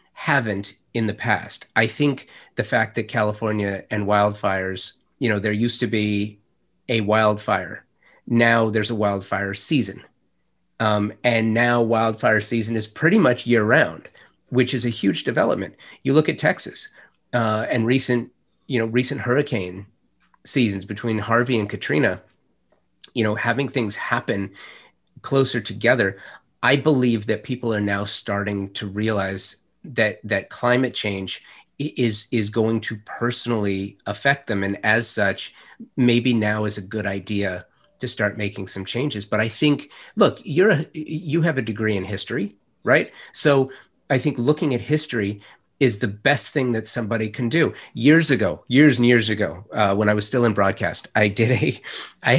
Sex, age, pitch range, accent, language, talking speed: male, 30-49, 105-120 Hz, American, English, 160 wpm